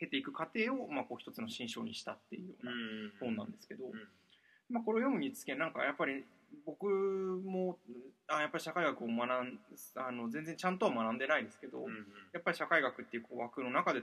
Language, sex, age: Japanese, male, 20-39